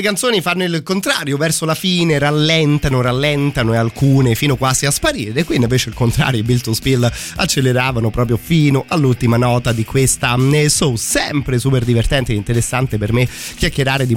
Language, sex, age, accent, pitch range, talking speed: Italian, male, 30-49, native, 120-150 Hz, 175 wpm